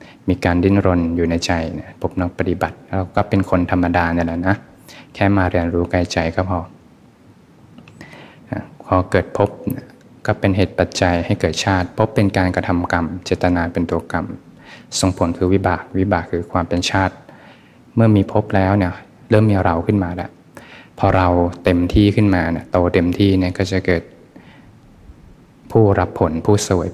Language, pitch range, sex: Thai, 85-100 Hz, male